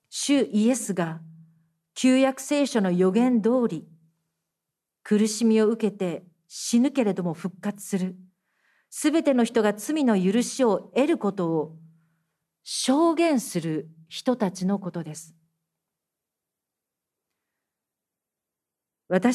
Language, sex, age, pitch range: Japanese, female, 50-69, 165-245 Hz